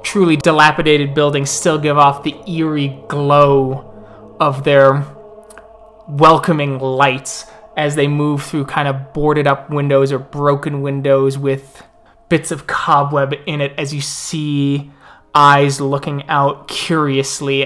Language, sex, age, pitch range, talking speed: English, male, 20-39, 140-160 Hz, 130 wpm